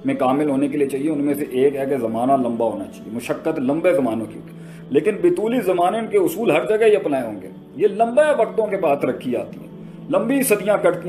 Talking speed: 240 wpm